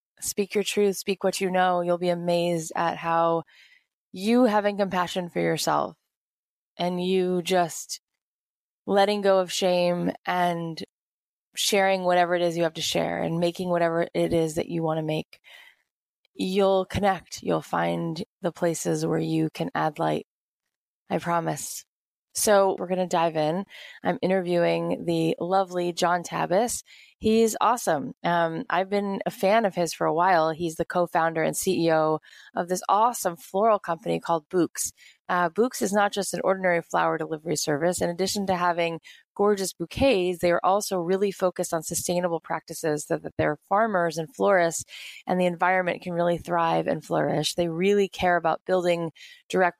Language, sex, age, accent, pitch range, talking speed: English, female, 20-39, American, 165-195 Hz, 165 wpm